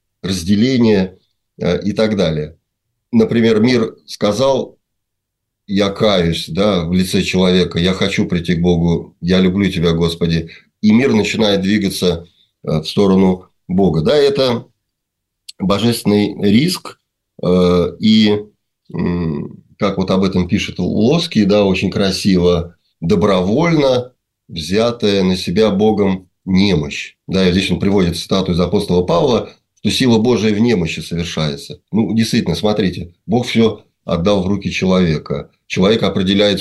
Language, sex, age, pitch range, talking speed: Russian, male, 30-49, 90-105 Hz, 125 wpm